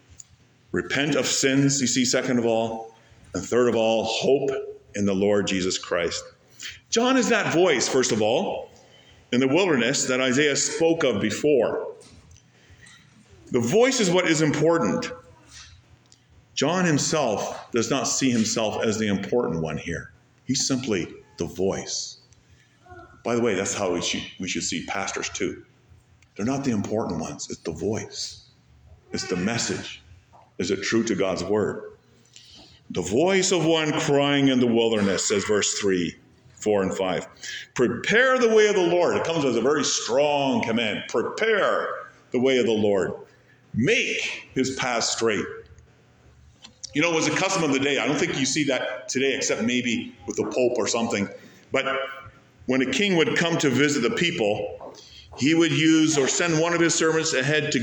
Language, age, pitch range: English, 50-69, 115-160 Hz